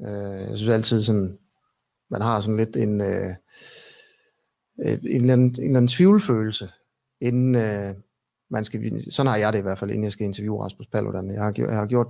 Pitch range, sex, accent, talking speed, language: 105-125 Hz, male, native, 180 wpm, Danish